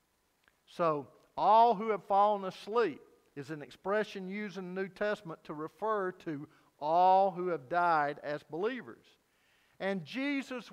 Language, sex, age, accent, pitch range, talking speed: English, male, 50-69, American, 140-210 Hz, 140 wpm